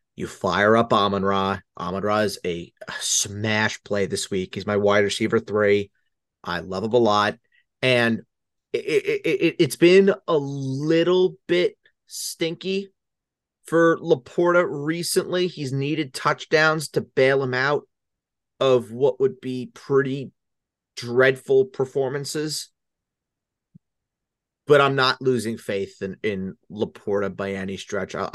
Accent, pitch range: American, 95-155 Hz